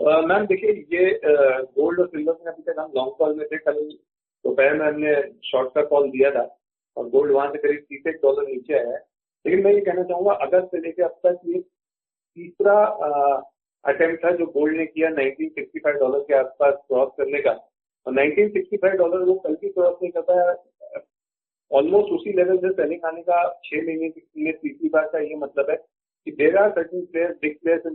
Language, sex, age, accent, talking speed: Hindi, male, 40-59, native, 195 wpm